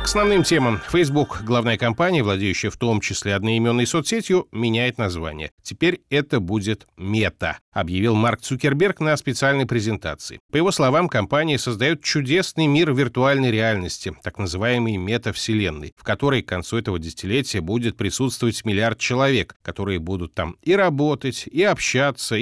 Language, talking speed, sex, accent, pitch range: Russian, 140 wpm, male, native, 105-140 Hz